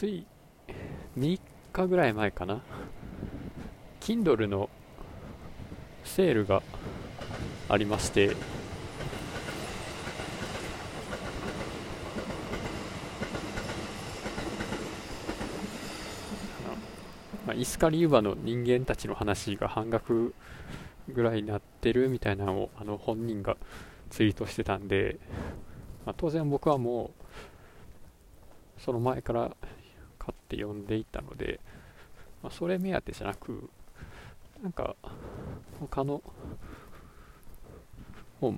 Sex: male